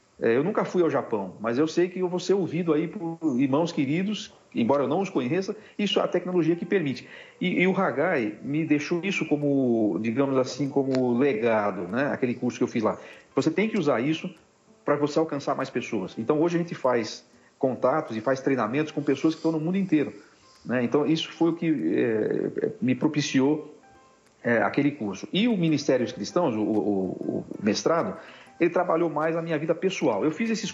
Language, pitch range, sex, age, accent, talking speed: Portuguese, 120-160 Hz, male, 50-69, Brazilian, 205 wpm